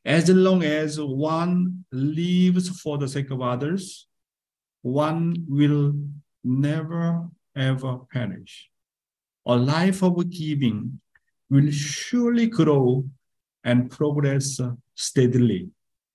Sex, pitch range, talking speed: male, 135-185 Hz, 95 wpm